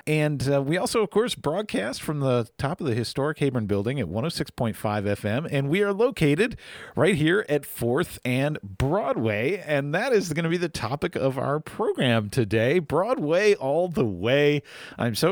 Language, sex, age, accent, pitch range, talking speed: English, male, 40-59, American, 110-150 Hz, 180 wpm